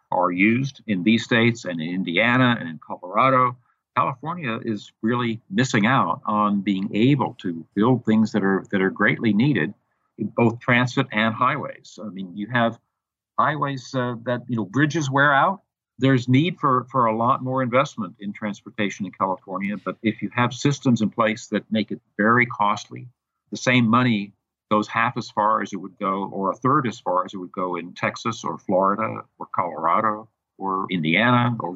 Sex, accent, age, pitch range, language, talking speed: male, American, 50-69, 105-125 Hz, English, 185 wpm